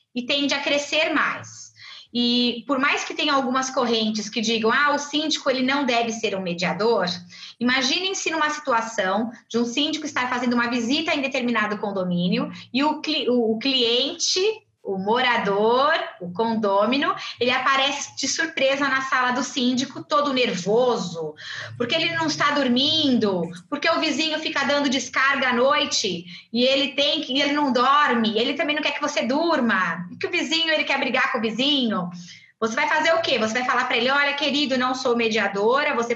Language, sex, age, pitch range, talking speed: Portuguese, female, 20-39, 225-295 Hz, 175 wpm